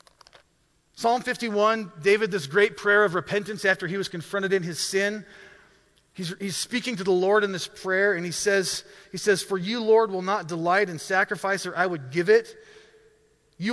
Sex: male